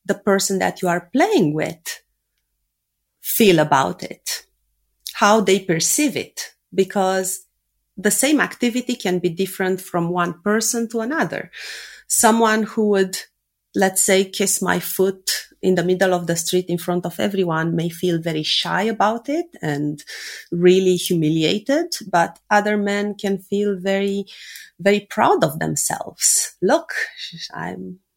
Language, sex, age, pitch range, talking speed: English, female, 30-49, 170-215 Hz, 140 wpm